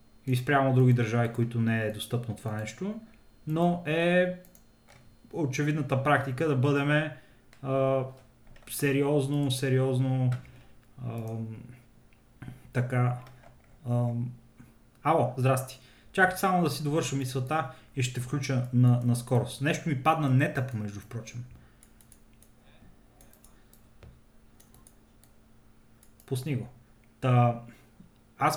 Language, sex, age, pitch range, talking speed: Bulgarian, male, 30-49, 120-145 Hz, 100 wpm